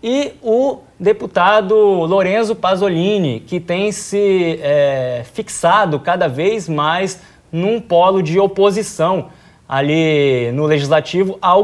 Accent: Brazilian